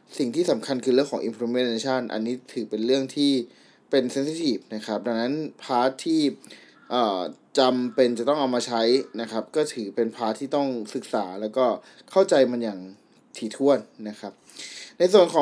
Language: Thai